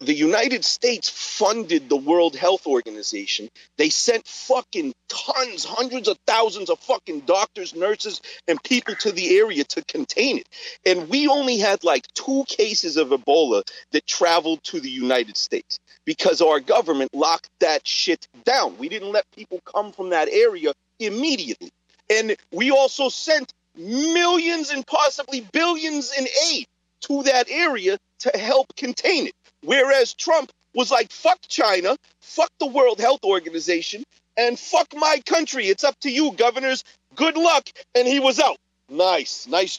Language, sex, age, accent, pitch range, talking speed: English, male, 40-59, American, 195-320 Hz, 155 wpm